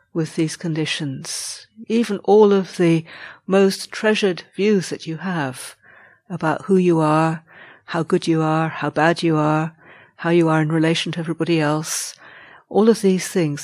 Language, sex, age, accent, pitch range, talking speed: English, female, 60-79, British, 150-185 Hz, 165 wpm